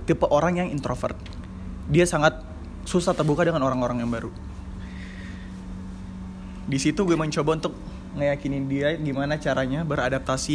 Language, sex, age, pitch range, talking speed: Indonesian, male, 20-39, 90-145 Hz, 125 wpm